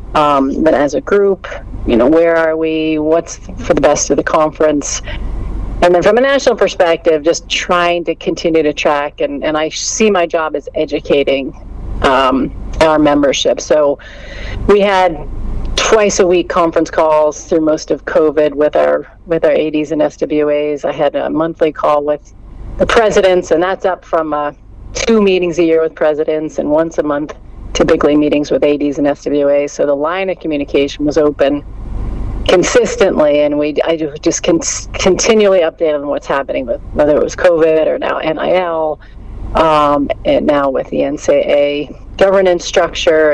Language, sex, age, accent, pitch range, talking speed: English, female, 40-59, American, 145-175 Hz, 170 wpm